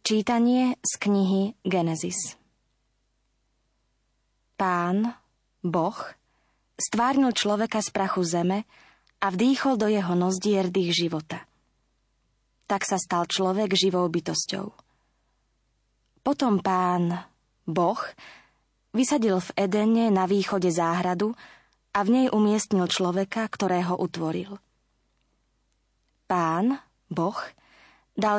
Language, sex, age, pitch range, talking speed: Slovak, female, 20-39, 165-205 Hz, 90 wpm